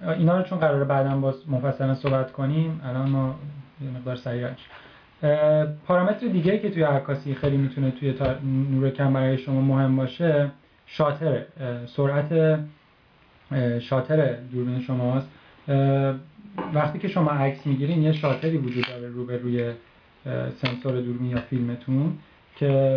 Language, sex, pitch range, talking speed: Persian, male, 130-150 Hz, 125 wpm